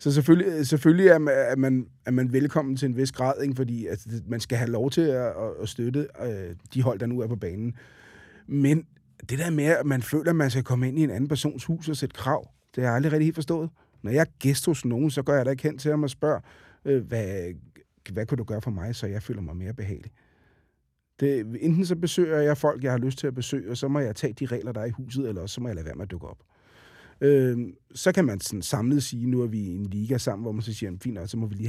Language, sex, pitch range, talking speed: Danish, male, 110-140 Hz, 275 wpm